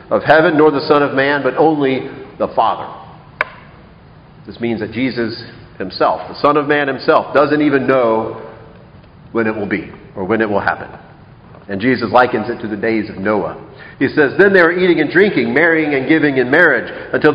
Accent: American